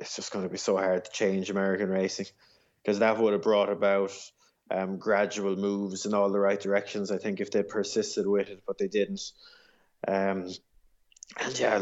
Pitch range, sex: 100-110 Hz, male